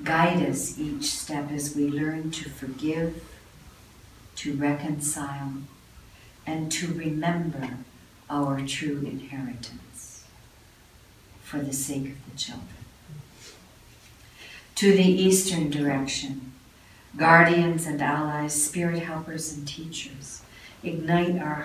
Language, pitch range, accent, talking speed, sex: English, 135-165 Hz, American, 100 wpm, female